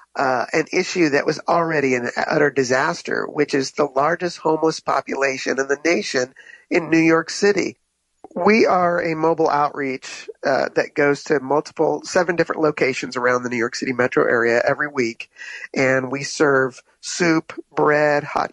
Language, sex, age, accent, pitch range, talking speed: English, male, 50-69, American, 130-155 Hz, 160 wpm